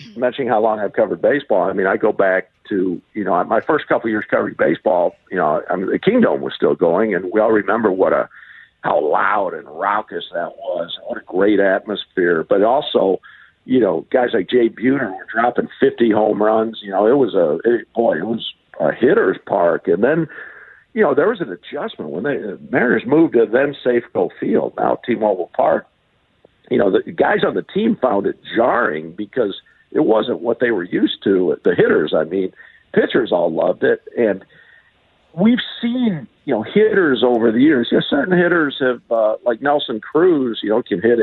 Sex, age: male, 50-69